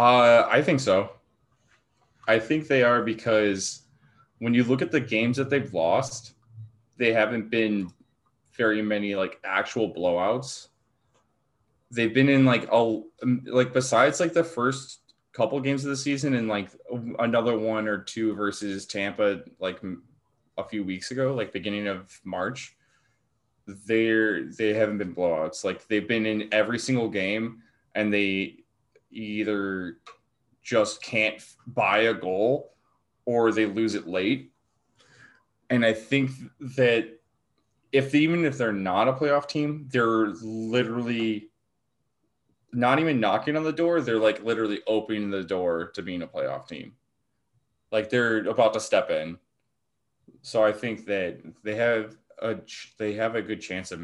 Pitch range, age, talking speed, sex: 105-125 Hz, 20-39, 150 wpm, male